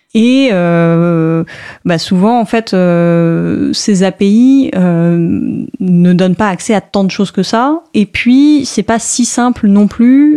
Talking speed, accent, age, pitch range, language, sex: 160 wpm, French, 30-49, 180-220 Hz, French, female